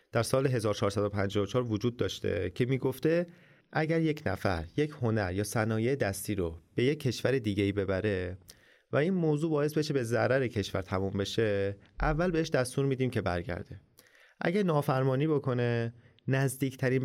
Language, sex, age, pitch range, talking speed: Persian, male, 30-49, 105-145 Hz, 150 wpm